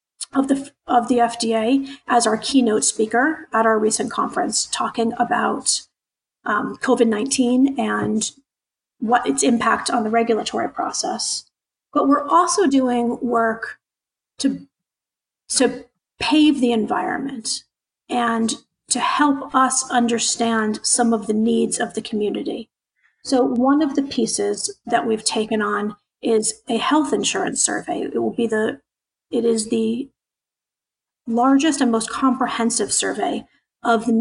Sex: female